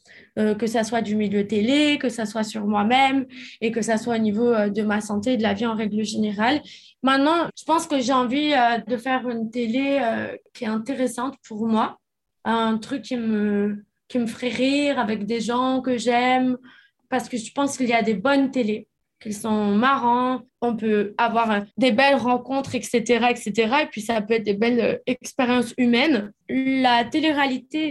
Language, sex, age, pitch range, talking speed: French, female, 20-39, 215-255 Hz, 200 wpm